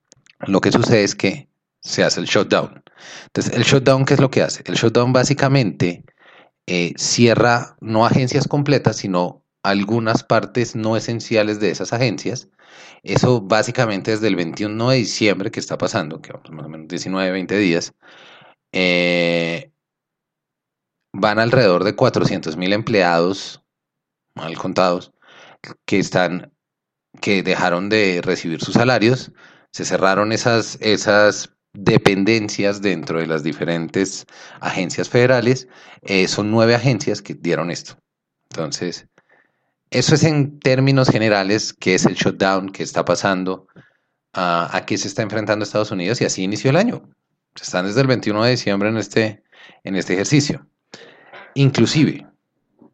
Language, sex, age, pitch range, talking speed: Spanish, male, 30-49, 95-125 Hz, 140 wpm